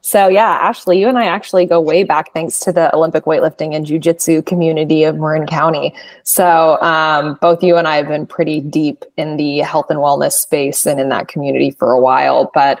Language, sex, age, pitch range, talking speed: English, female, 20-39, 155-180 Hz, 210 wpm